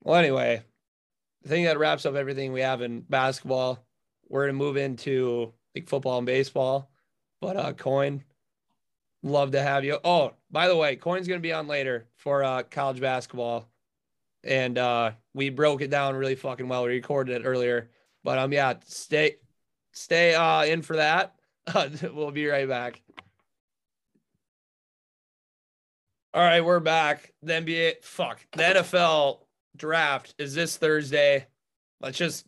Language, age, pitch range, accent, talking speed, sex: English, 20-39, 135-160 Hz, American, 150 wpm, male